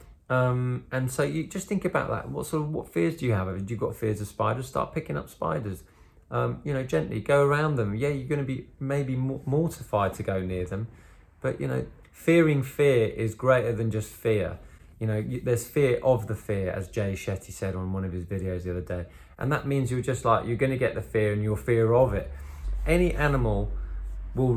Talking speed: 230 wpm